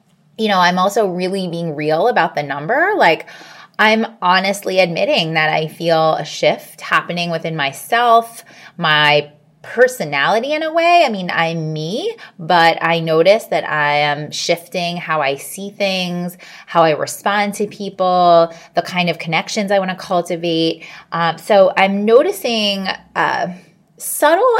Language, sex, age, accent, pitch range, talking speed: English, female, 20-39, American, 165-225 Hz, 150 wpm